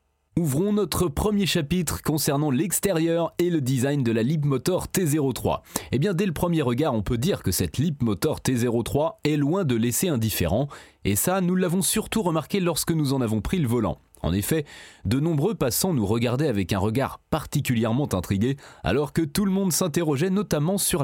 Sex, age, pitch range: male, 30-49, 115-165 Hz